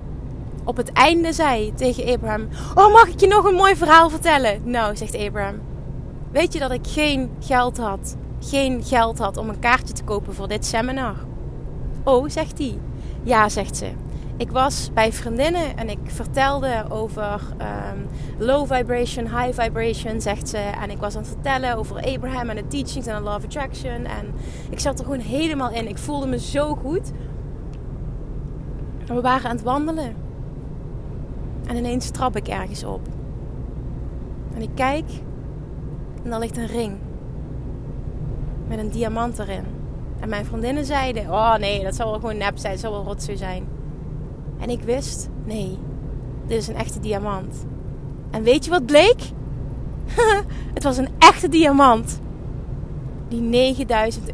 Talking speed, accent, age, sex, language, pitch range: 160 wpm, Dutch, 20-39, female, Dutch, 200-280 Hz